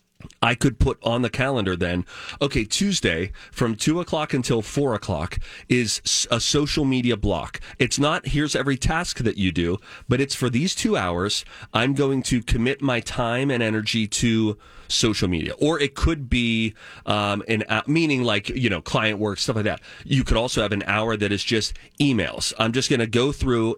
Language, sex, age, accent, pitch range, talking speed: English, male, 30-49, American, 105-135 Hz, 195 wpm